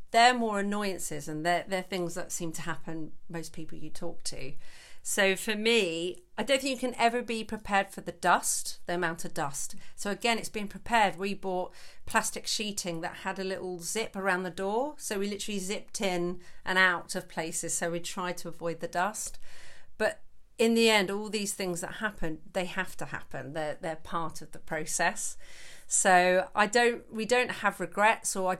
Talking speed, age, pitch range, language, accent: 200 wpm, 40-59, 175-215 Hz, English, British